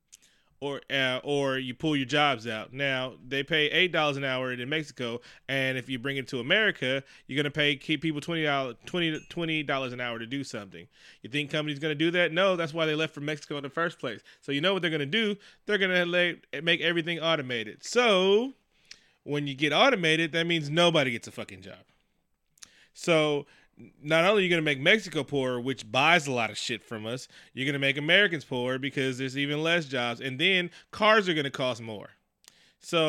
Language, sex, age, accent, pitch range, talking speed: English, male, 20-39, American, 135-175 Hz, 215 wpm